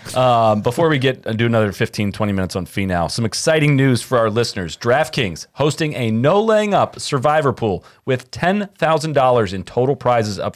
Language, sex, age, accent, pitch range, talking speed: English, male, 30-49, American, 110-145 Hz, 190 wpm